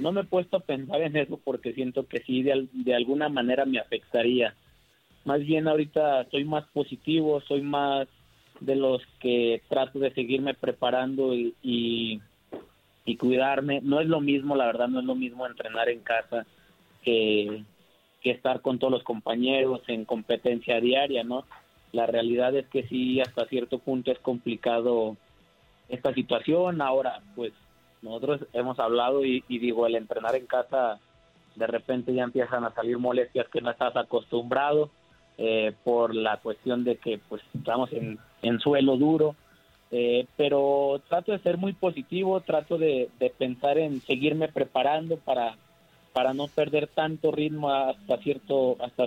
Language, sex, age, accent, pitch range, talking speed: Spanish, male, 30-49, Mexican, 120-145 Hz, 160 wpm